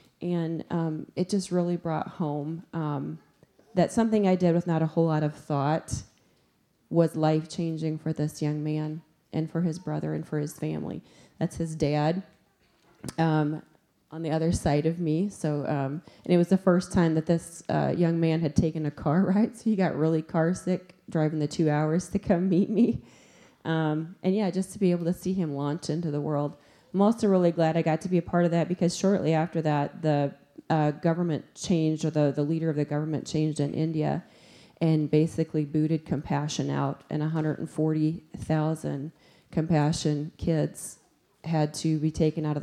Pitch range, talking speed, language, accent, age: 150-170 Hz, 190 wpm, English, American, 30-49